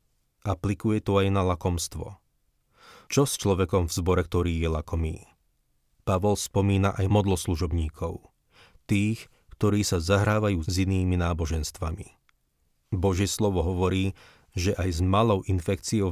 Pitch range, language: 85-105 Hz, Slovak